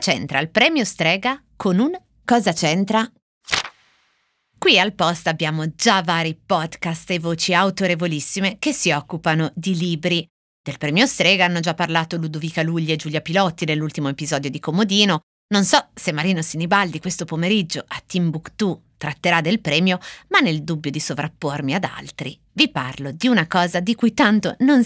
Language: Italian